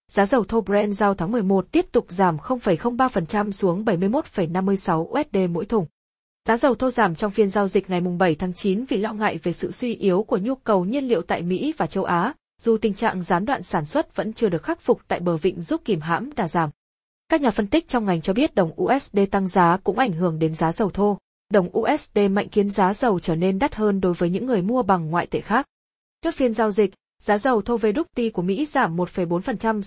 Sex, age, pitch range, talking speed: female, 20-39, 185-235 Hz, 235 wpm